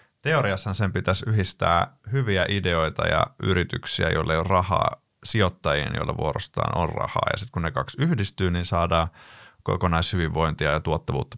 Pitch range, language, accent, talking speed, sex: 85-105 Hz, Finnish, native, 150 wpm, male